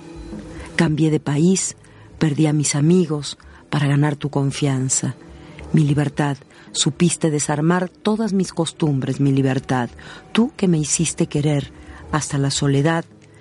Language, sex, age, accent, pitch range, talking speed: Spanish, female, 50-69, Mexican, 145-175 Hz, 125 wpm